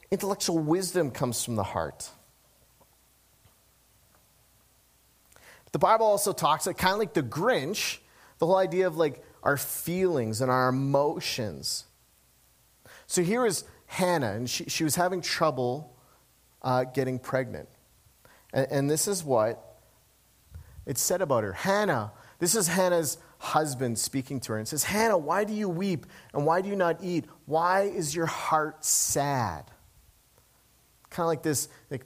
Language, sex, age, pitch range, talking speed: English, male, 40-59, 120-170 Hz, 150 wpm